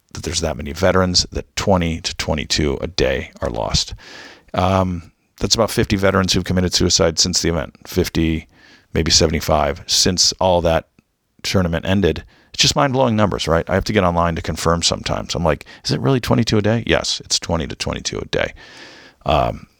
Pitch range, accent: 80-105 Hz, American